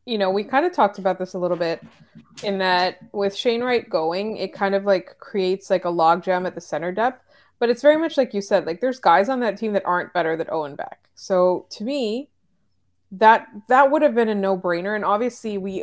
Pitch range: 195-265 Hz